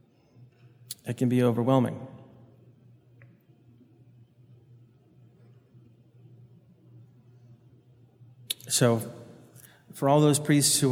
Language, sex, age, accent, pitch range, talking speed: English, male, 30-49, American, 120-130 Hz, 55 wpm